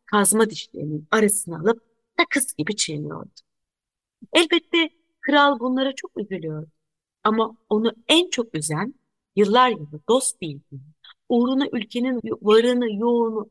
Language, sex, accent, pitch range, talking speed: Turkish, female, native, 170-260 Hz, 110 wpm